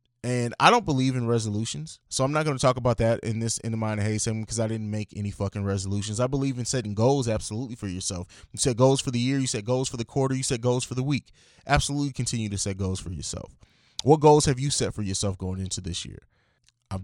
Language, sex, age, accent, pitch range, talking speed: English, male, 20-39, American, 100-130 Hz, 255 wpm